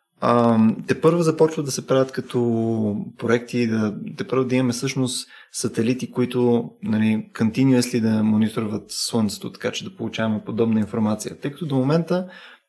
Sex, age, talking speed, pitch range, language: male, 20-39, 140 wpm, 110-130 Hz, Bulgarian